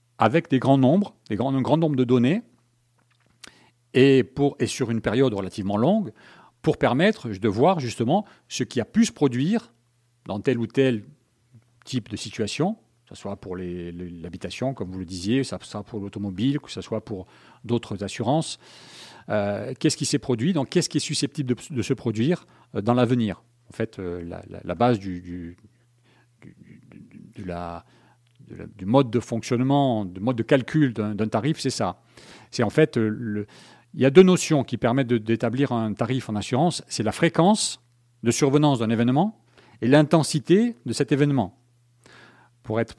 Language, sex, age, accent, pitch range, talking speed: French, male, 40-59, French, 110-140 Hz, 185 wpm